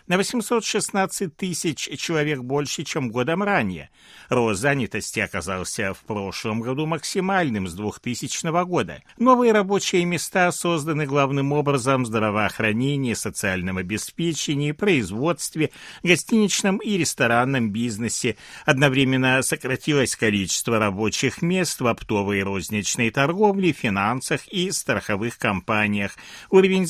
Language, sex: Russian, male